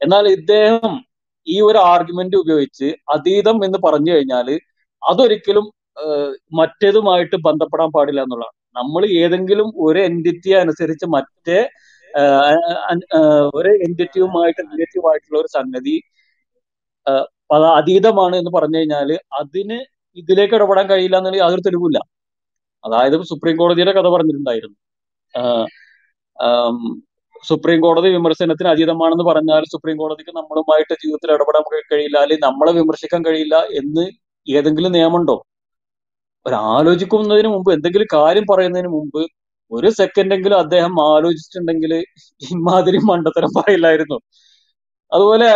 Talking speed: 95 wpm